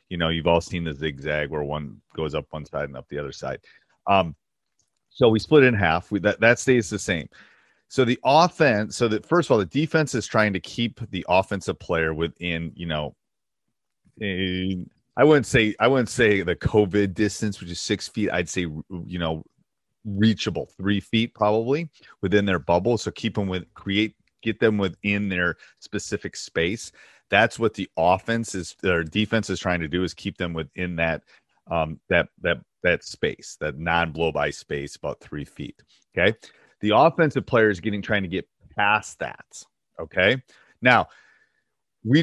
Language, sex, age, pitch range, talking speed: English, male, 30-49, 85-110 Hz, 180 wpm